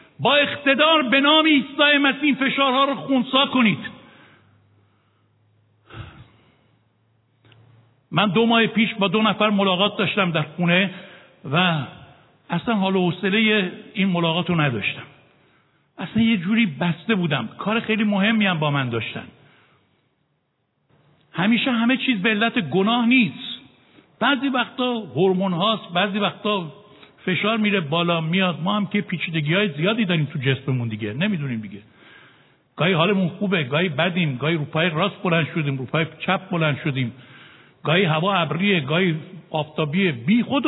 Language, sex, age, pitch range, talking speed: Persian, male, 60-79, 150-225 Hz, 130 wpm